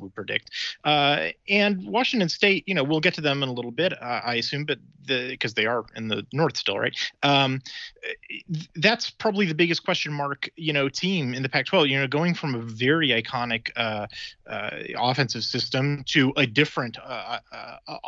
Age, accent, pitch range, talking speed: 30-49, American, 115-145 Hz, 195 wpm